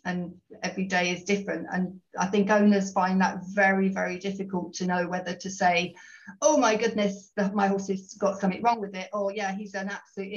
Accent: British